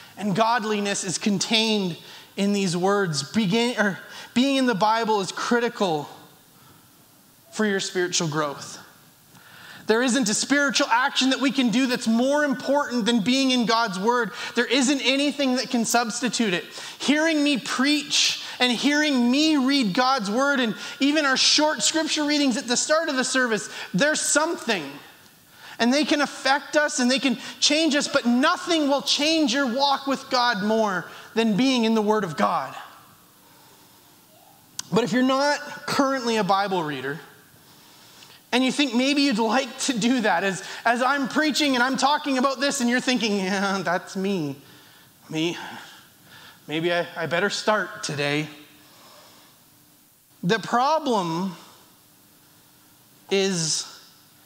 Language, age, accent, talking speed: English, 30-49, American, 145 wpm